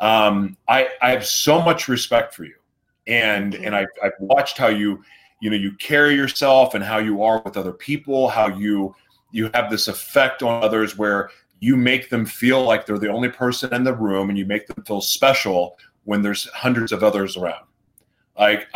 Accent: American